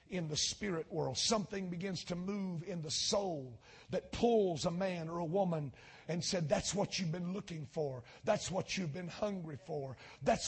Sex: male